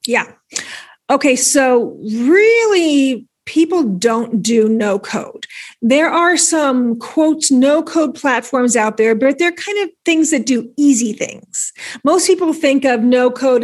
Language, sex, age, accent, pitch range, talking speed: English, female, 40-59, American, 235-310 Hz, 130 wpm